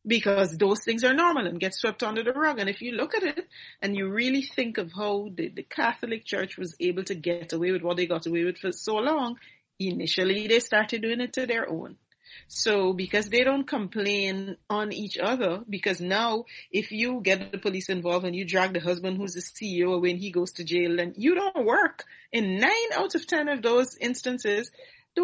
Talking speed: 220 wpm